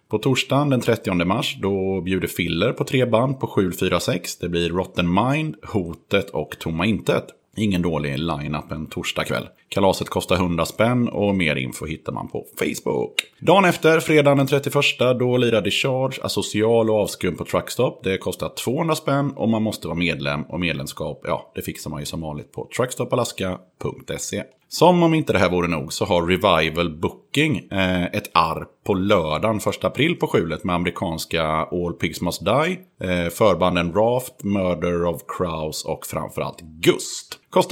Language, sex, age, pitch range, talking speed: Swedish, male, 30-49, 85-125 Hz, 175 wpm